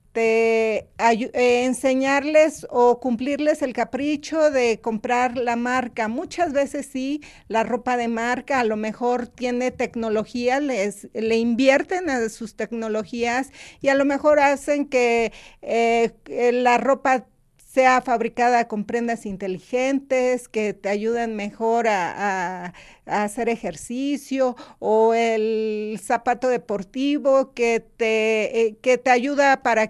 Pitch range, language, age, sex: 230-280 Hz, Spanish, 50-69, female